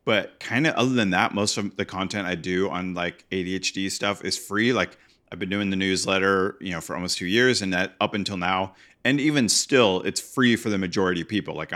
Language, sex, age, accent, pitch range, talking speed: English, male, 30-49, American, 90-110 Hz, 235 wpm